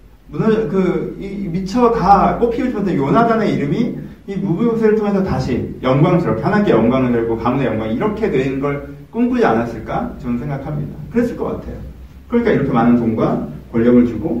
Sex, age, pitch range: male, 40-59, 95-135 Hz